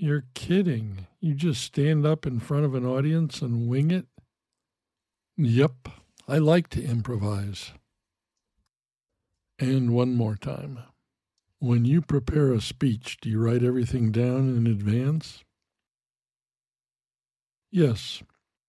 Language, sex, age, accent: English, male, 60-79, American